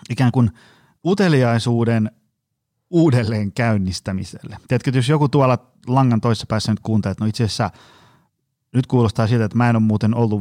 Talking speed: 150 wpm